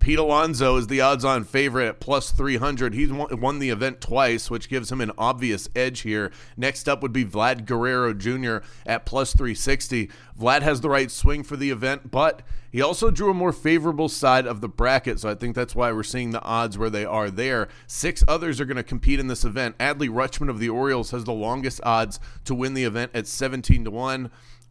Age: 30-49